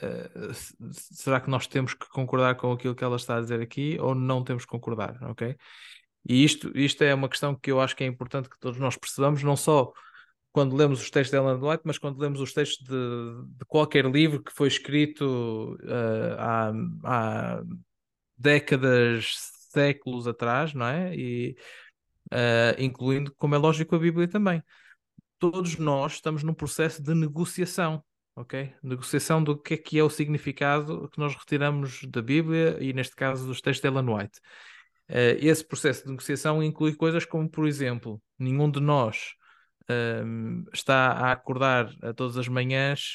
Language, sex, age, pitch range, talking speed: Portuguese, male, 20-39, 125-150 Hz, 170 wpm